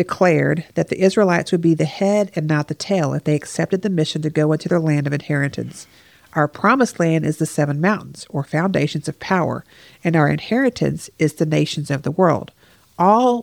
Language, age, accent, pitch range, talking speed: English, 50-69, American, 150-185 Hz, 200 wpm